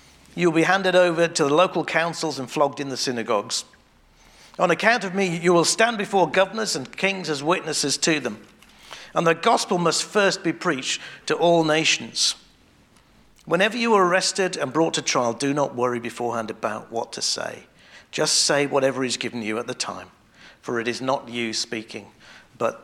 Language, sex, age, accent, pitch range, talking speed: English, male, 50-69, British, 125-175 Hz, 185 wpm